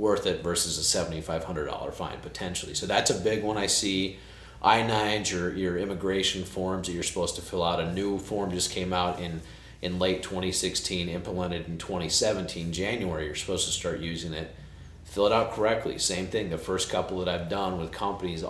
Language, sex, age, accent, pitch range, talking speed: English, male, 40-59, American, 85-95 Hz, 190 wpm